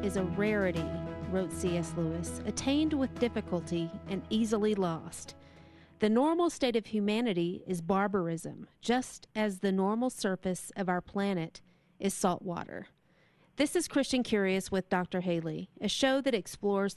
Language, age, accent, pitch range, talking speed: English, 40-59, American, 180-220 Hz, 145 wpm